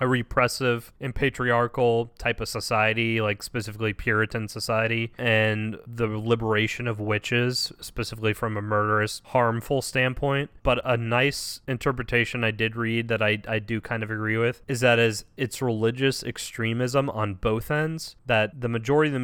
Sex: male